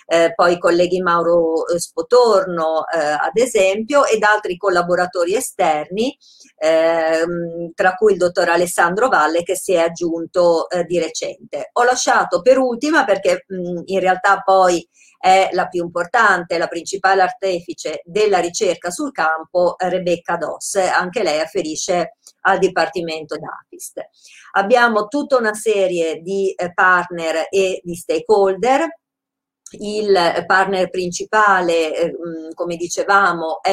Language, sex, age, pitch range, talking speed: Italian, female, 50-69, 170-205 Hz, 130 wpm